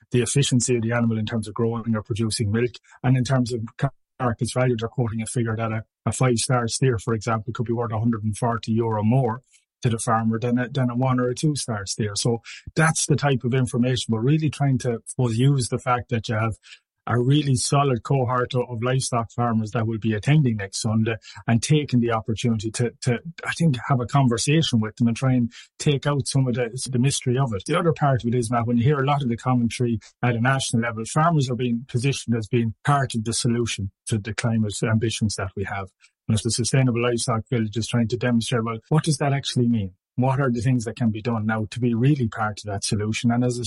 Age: 30-49